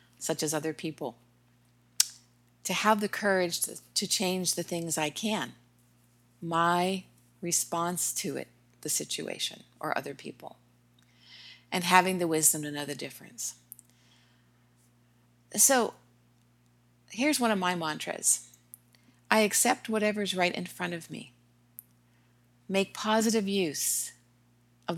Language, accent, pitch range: English, American, 120-185 Hz